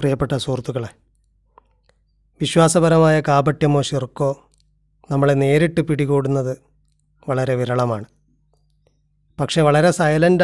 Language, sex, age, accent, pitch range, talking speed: Malayalam, male, 30-49, native, 135-160 Hz, 75 wpm